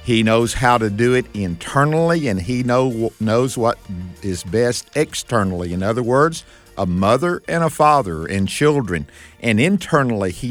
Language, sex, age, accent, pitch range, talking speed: English, male, 50-69, American, 100-130 Hz, 155 wpm